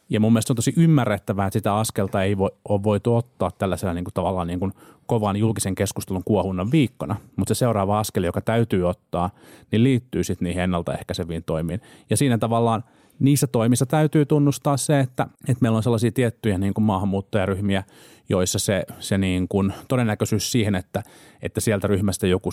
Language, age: Finnish, 30-49